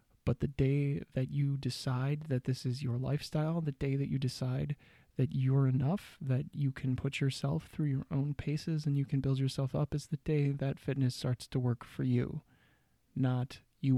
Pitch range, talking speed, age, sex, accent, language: 125-140 Hz, 200 wpm, 20-39, male, American, English